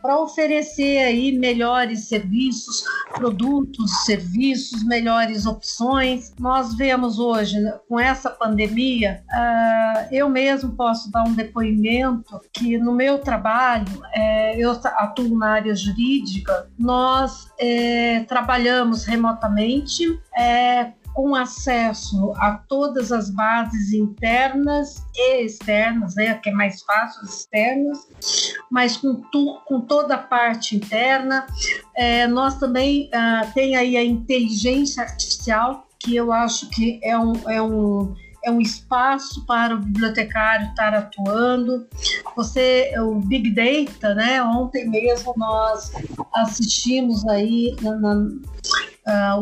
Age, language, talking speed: 50-69, Portuguese, 115 wpm